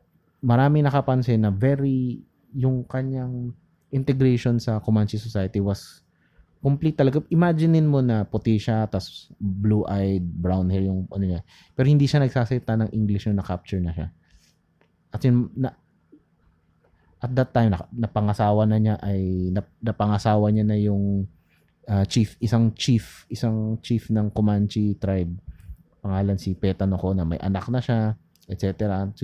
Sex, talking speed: male, 140 wpm